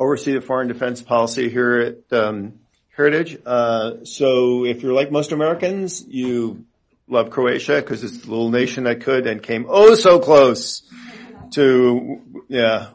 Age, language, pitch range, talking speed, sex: 40-59, English, 110-130 Hz, 155 wpm, male